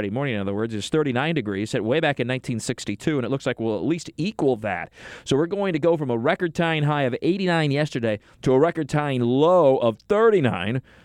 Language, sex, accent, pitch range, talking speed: English, male, American, 110-140 Hz, 205 wpm